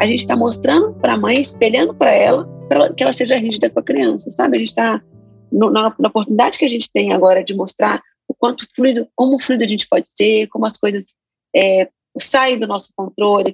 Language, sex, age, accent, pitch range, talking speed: Portuguese, female, 40-59, Brazilian, 205-275 Hz, 215 wpm